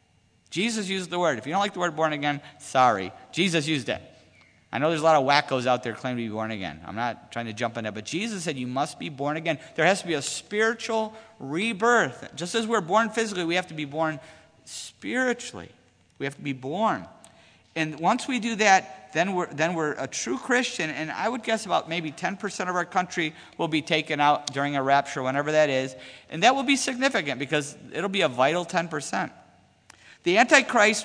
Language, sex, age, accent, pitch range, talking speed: English, male, 50-69, American, 150-220 Hz, 220 wpm